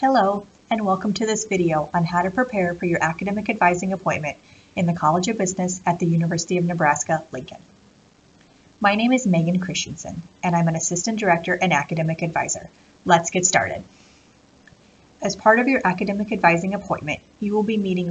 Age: 30-49